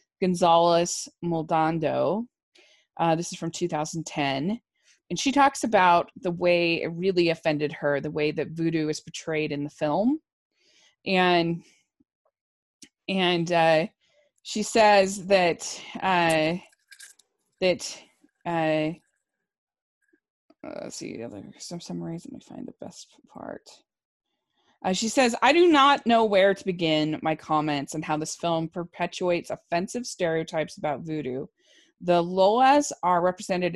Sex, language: female, English